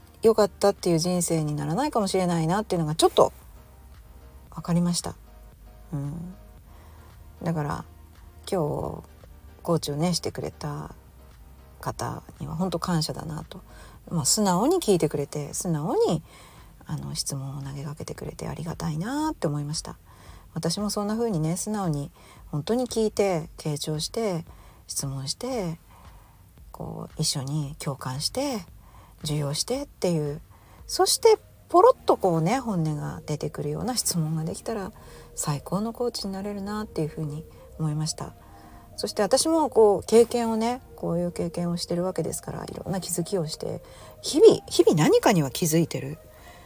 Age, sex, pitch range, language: 40-59, female, 115-190 Hz, Japanese